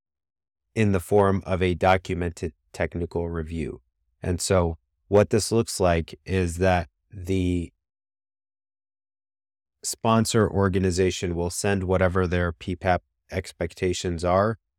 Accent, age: American, 30-49